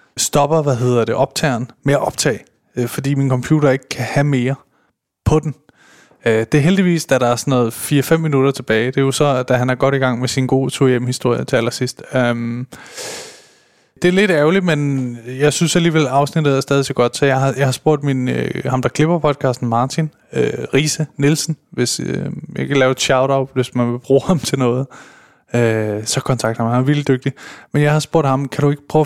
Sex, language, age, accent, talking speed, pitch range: male, Danish, 20-39, native, 205 wpm, 125-150 Hz